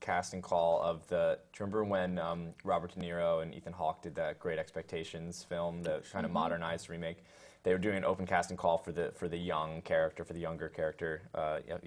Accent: American